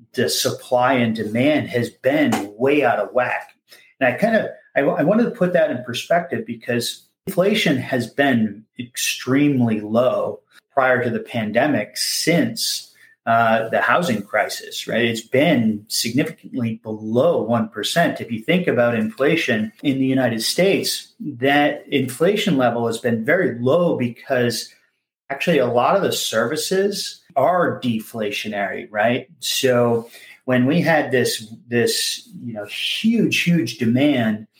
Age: 40-59